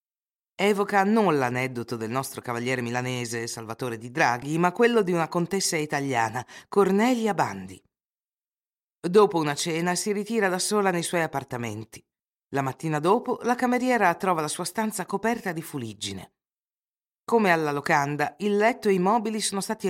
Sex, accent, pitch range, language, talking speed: female, native, 135-200 Hz, Italian, 150 wpm